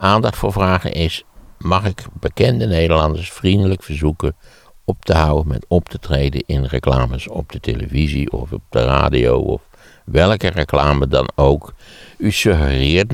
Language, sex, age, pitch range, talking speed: Dutch, male, 60-79, 70-95 Hz, 150 wpm